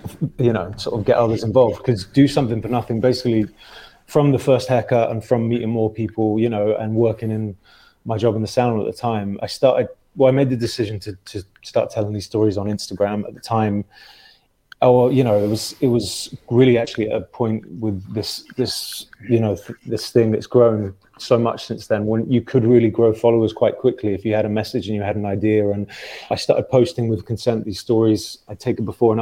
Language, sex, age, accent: English, male, 20-39, British